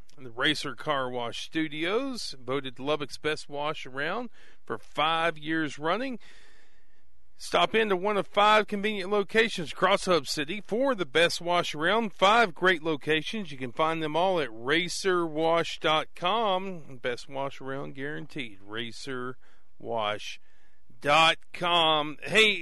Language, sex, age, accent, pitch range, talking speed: English, male, 40-59, American, 150-200 Hz, 120 wpm